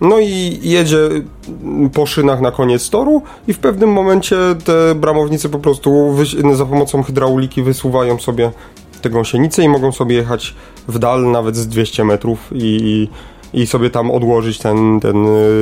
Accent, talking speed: native, 155 wpm